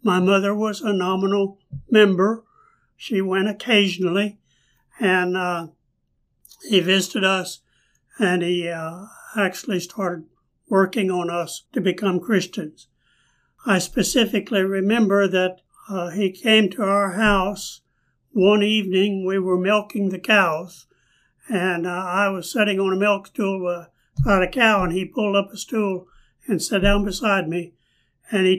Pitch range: 180-205 Hz